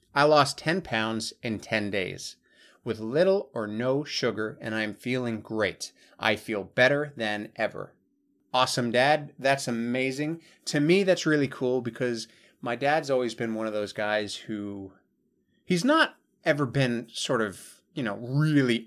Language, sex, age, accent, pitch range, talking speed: English, male, 30-49, American, 105-140 Hz, 155 wpm